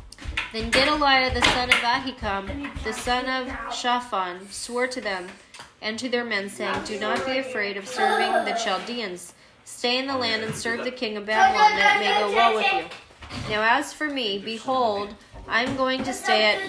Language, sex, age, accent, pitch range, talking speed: English, female, 30-49, American, 220-280 Hz, 190 wpm